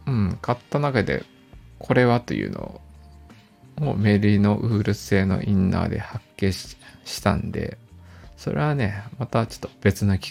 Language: Japanese